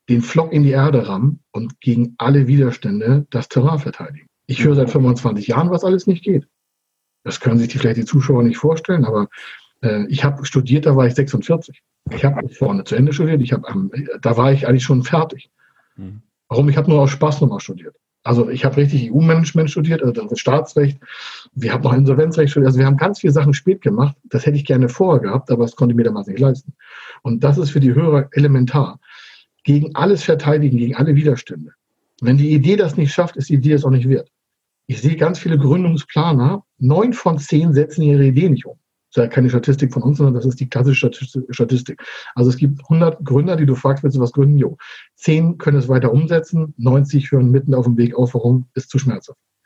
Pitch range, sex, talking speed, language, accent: 125-150 Hz, male, 215 wpm, German, German